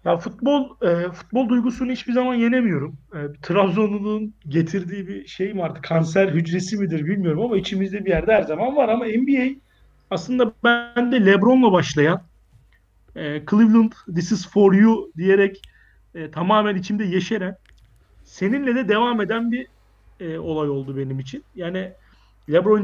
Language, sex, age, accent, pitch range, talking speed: Turkish, male, 40-59, native, 165-225 Hz, 145 wpm